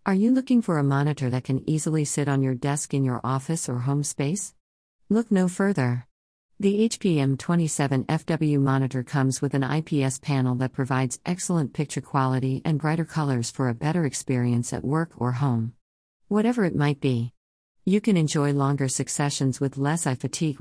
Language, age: English, 50-69